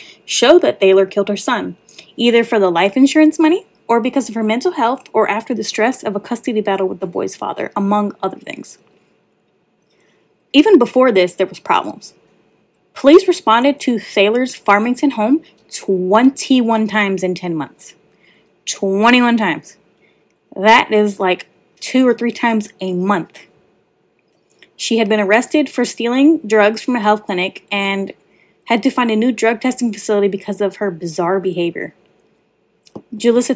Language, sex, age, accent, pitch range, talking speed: English, female, 10-29, American, 205-255 Hz, 155 wpm